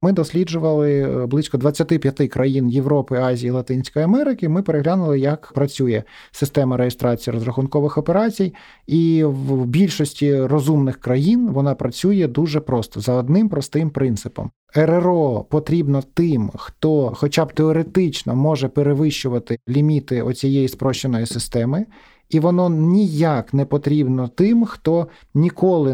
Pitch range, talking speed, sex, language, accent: 125-160 Hz, 120 wpm, male, Ukrainian, native